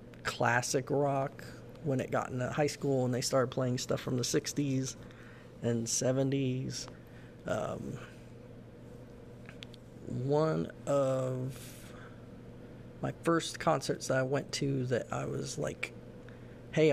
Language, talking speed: English, 115 wpm